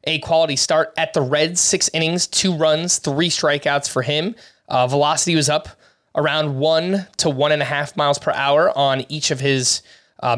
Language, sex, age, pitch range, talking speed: English, male, 20-39, 140-175 Hz, 190 wpm